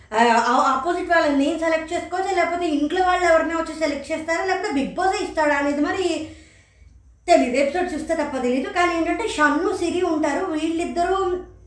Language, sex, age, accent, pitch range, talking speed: Telugu, female, 20-39, native, 260-325 Hz, 150 wpm